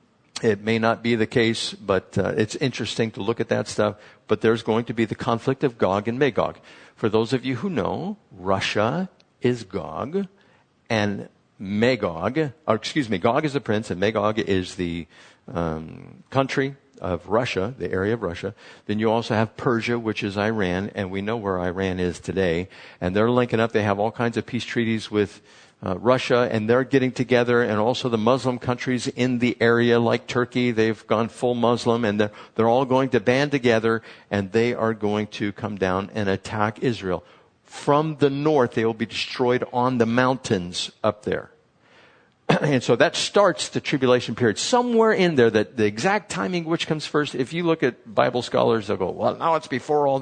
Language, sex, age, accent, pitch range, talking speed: English, male, 50-69, American, 105-130 Hz, 195 wpm